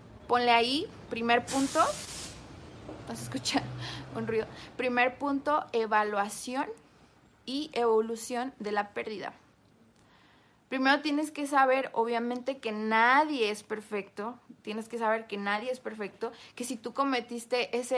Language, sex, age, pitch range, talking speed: English, female, 20-39, 215-245 Hz, 125 wpm